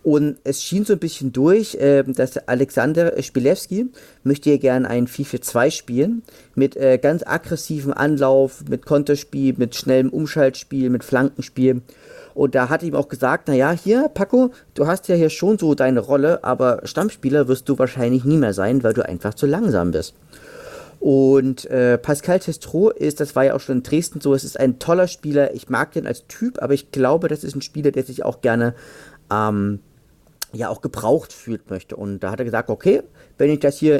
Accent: German